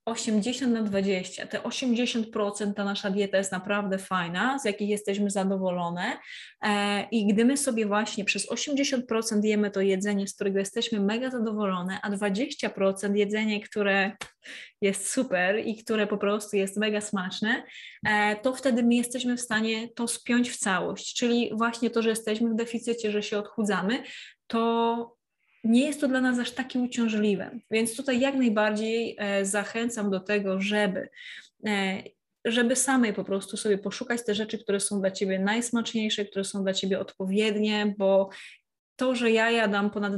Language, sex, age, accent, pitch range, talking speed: Polish, female, 20-39, native, 200-235 Hz, 160 wpm